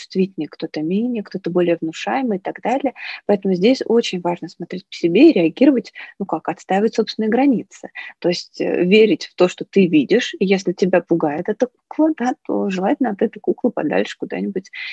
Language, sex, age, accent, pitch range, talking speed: Russian, female, 30-49, native, 180-225 Hz, 175 wpm